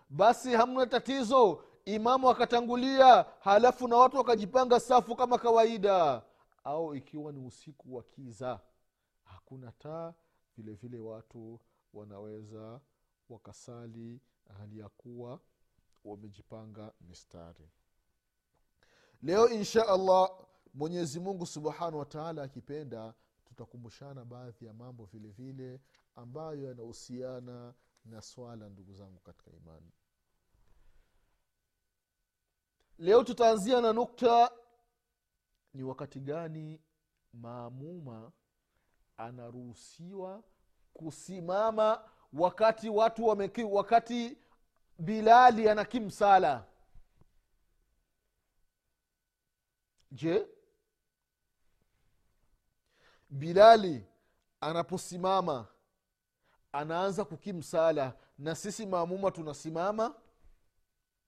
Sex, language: male, Swahili